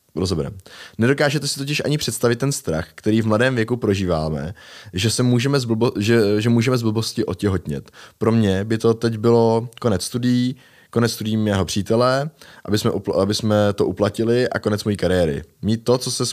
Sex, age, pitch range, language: male, 20-39, 95-115 Hz, Czech